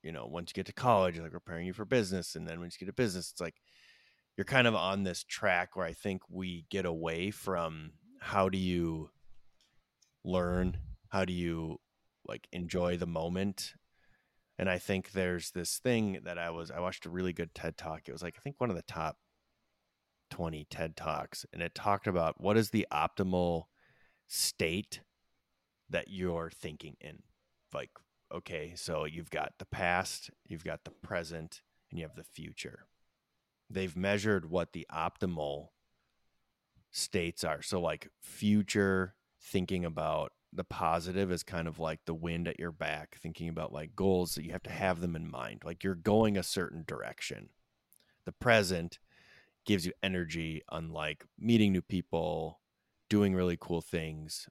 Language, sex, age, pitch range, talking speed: English, male, 30-49, 85-95 Hz, 175 wpm